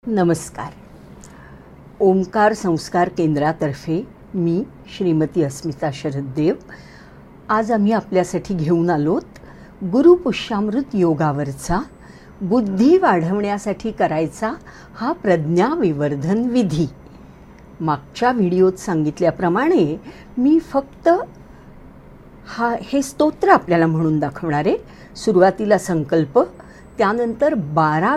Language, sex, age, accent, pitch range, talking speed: English, female, 50-69, Indian, 160-210 Hz, 85 wpm